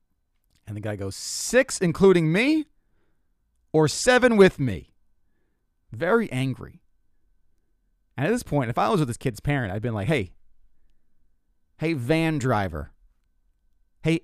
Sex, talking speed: male, 140 wpm